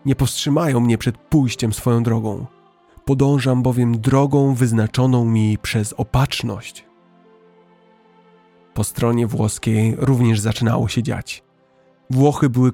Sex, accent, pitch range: male, native, 115-135 Hz